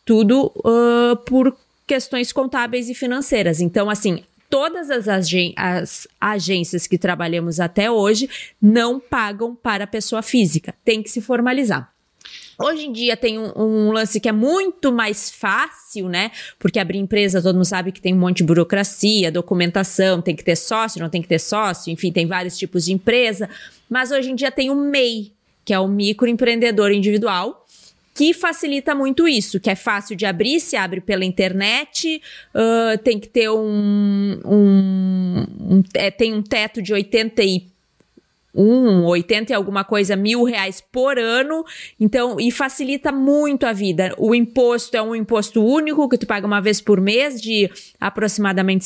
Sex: female